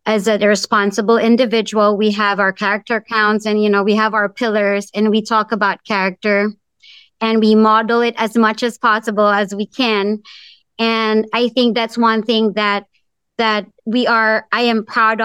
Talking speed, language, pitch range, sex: 175 wpm, English, 215-240 Hz, male